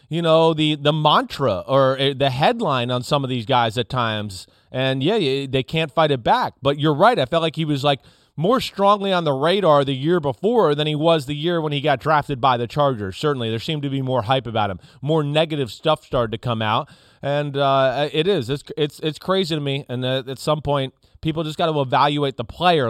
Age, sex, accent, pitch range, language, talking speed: 30-49, male, American, 135-170 Hz, English, 235 wpm